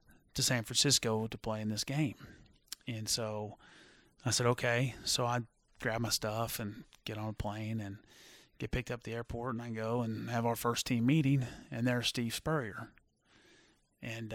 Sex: male